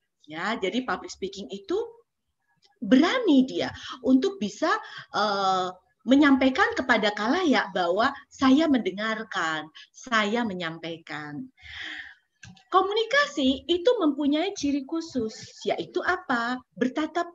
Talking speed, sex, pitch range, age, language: 90 wpm, female, 205-325 Hz, 30-49, Indonesian